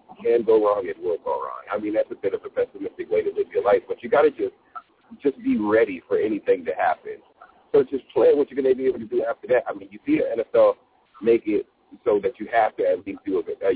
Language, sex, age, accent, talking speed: English, male, 40-59, American, 275 wpm